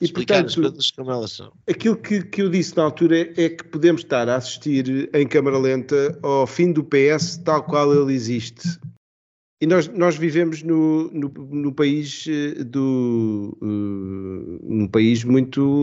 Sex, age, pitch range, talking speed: male, 50-69, 115-145 Hz, 145 wpm